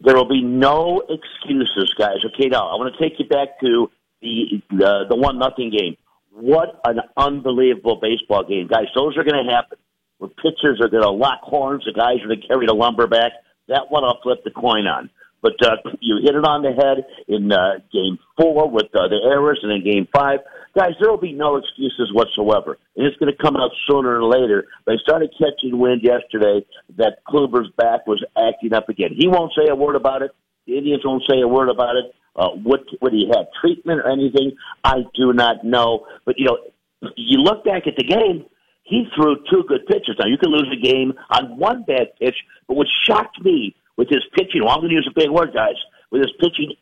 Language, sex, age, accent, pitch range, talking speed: English, male, 50-69, American, 120-155 Hz, 220 wpm